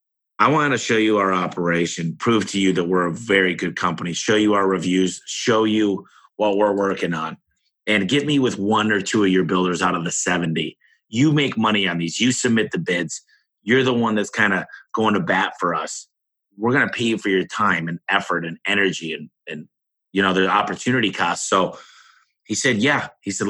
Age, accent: 30-49, American